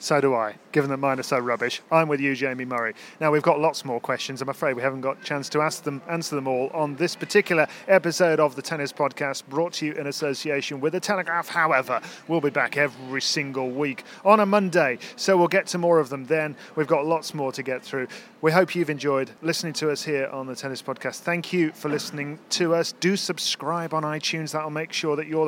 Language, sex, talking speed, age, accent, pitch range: English, male, 240 wpm, 40-59, British, 135-170 Hz